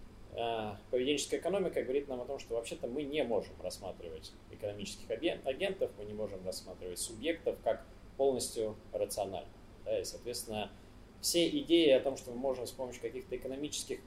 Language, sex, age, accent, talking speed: Russian, male, 20-39, native, 150 wpm